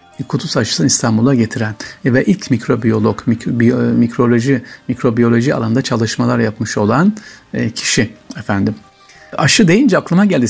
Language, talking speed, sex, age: Turkish, 120 wpm, male, 60-79